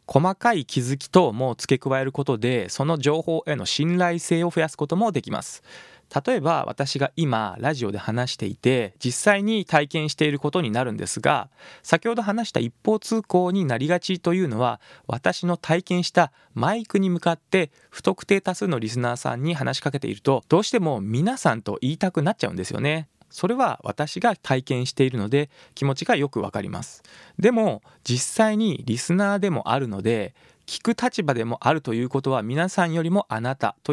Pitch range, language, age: 125-180 Hz, Japanese, 20-39